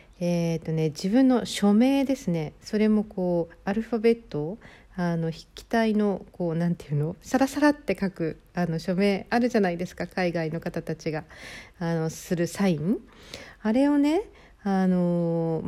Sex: female